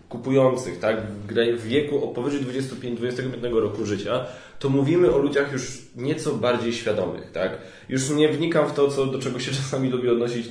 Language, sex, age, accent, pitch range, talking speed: Polish, male, 20-39, native, 115-150 Hz, 170 wpm